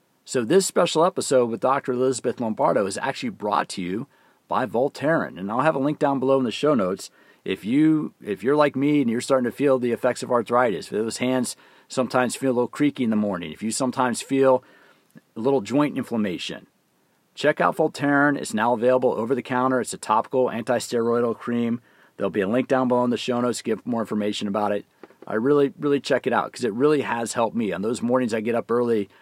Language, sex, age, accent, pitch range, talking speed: English, male, 40-59, American, 115-135 Hz, 225 wpm